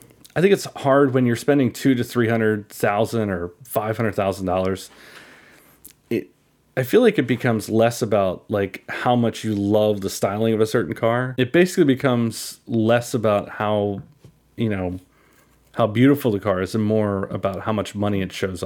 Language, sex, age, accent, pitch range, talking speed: English, male, 30-49, American, 100-125 Hz, 185 wpm